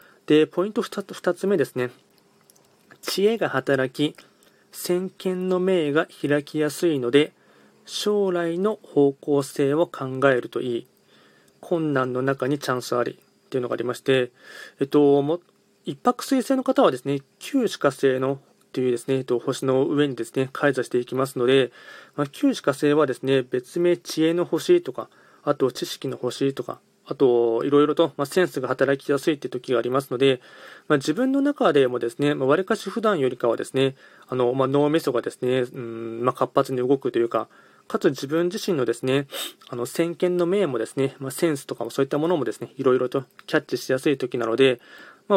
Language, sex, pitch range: Japanese, male, 130-170 Hz